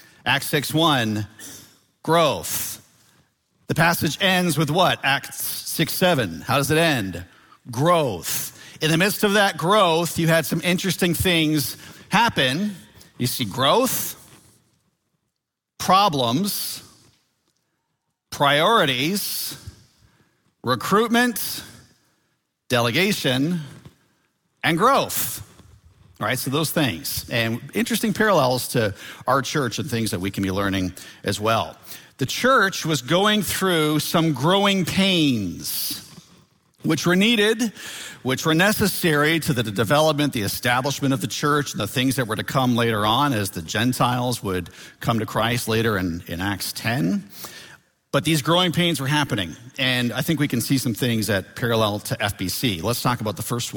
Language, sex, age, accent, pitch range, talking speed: English, male, 40-59, American, 110-165 Hz, 135 wpm